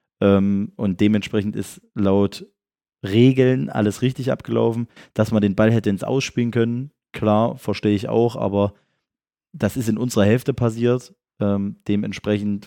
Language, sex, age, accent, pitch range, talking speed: German, male, 20-39, German, 100-115 Hz, 135 wpm